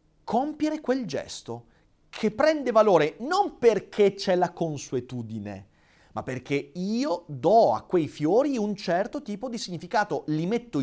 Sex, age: male, 30-49